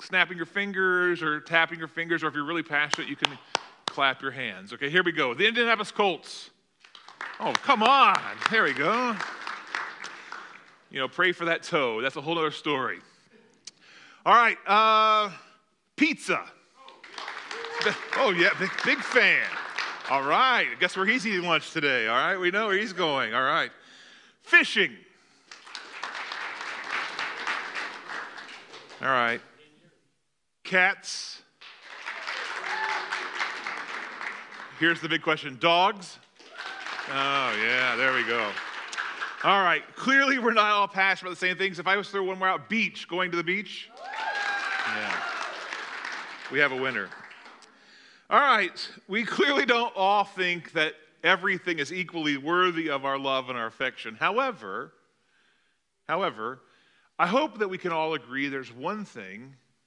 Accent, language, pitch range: American, English, 160-205 Hz